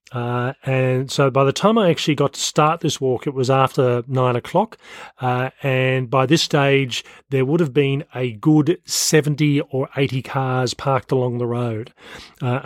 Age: 40-59